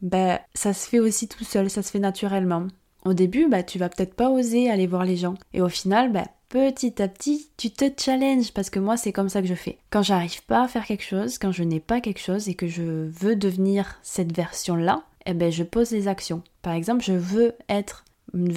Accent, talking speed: French, 240 wpm